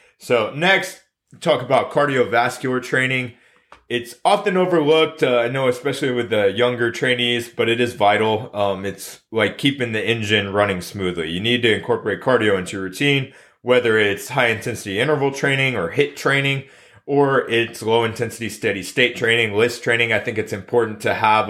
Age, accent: 30-49, American